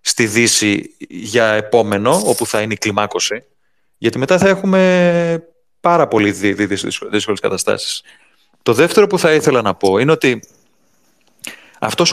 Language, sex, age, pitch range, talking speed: Greek, male, 30-49, 110-155 Hz, 145 wpm